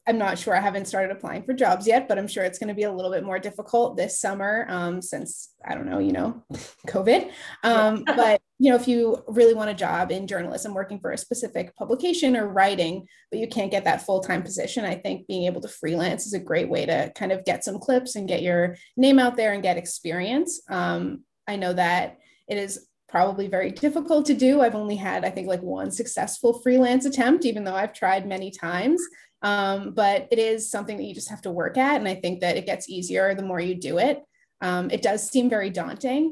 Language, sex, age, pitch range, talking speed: English, female, 20-39, 190-250 Hz, 230 wpm